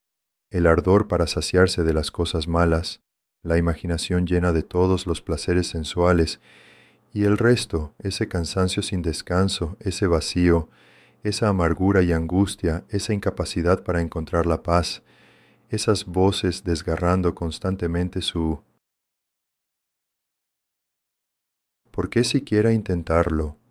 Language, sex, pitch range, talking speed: English, male, 85-105 Hz, 110 wpm